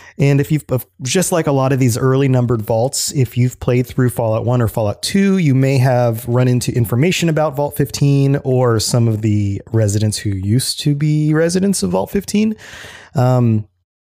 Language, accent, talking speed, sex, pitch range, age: English, American, 190 wpm, male, 105-150 Hz, 30-49